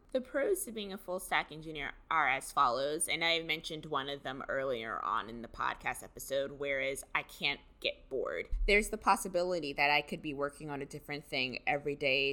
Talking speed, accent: 205 wpm, American